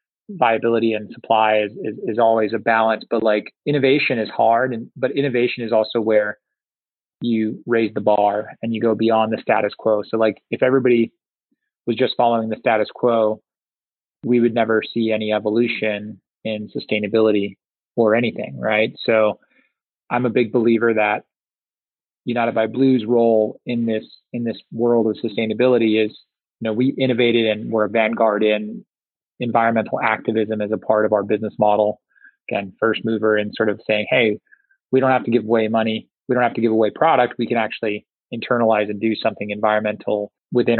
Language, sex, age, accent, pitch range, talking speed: English, male, 20-39, American, 110-120 Hz, 175 wpm